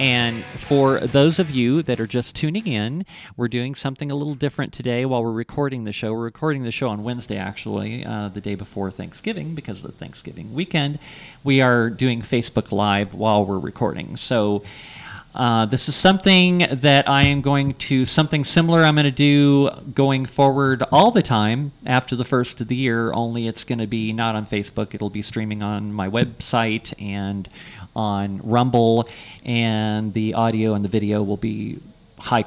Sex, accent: male, American